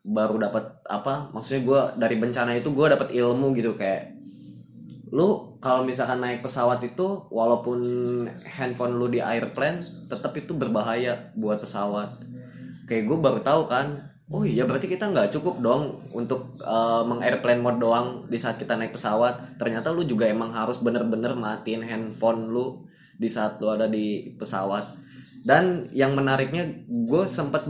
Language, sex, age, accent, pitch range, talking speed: Indonesian, male, 20-39, native, 115-150 Hz, 155 wpm